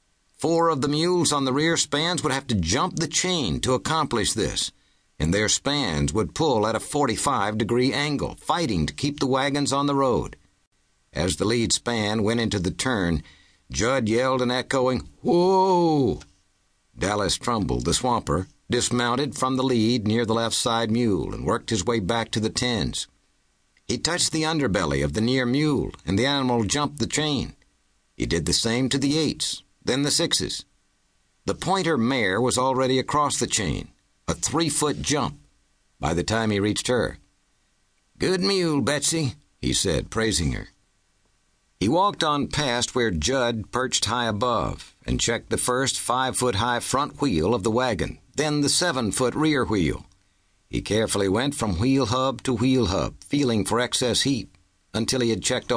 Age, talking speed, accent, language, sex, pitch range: 60-79, 170 wpm, American, English, male, 95-140 Hz